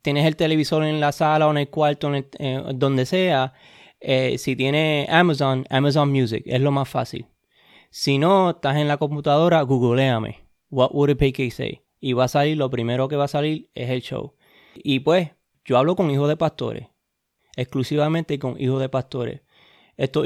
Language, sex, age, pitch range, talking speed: English, male, 20-39, 130-160 Hz, 185 wpm